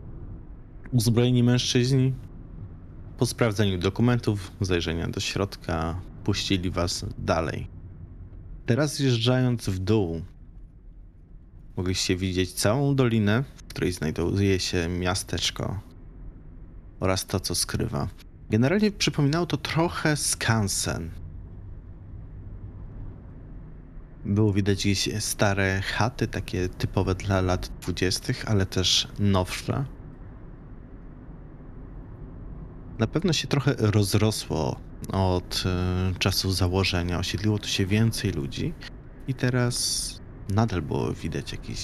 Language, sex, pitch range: Polish, male, 90-115 Hz